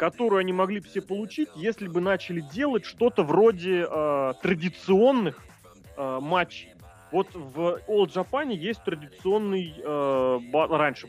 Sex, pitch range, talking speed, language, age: male, 145-215 Hz, 135 wpm, Russian, 30-49